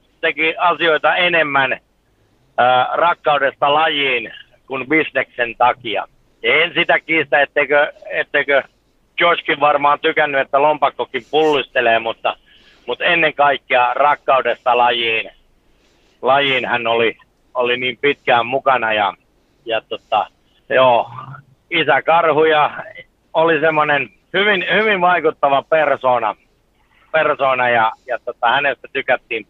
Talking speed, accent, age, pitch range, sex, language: 105 wpm, native, 60-79, 130-160 Hz, male, Finnish